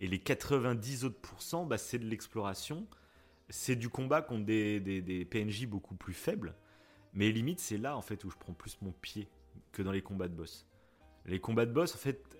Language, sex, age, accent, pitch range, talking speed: French, male, 30-49, French, 95-130 Hz, 215 wpm